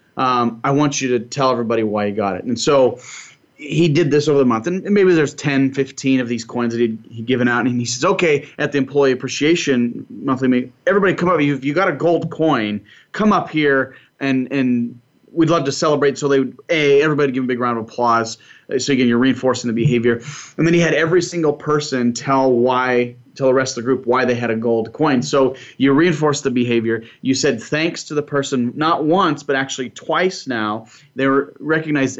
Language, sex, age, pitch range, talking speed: English, male, 30-49, 120-150 Hz, 220 wpm